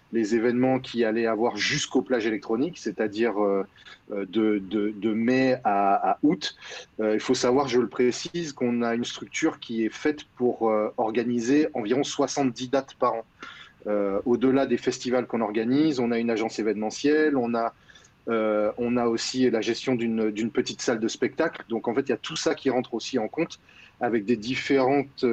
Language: French